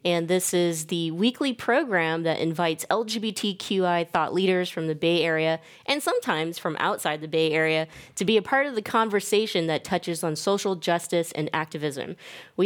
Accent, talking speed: American, 175 wpm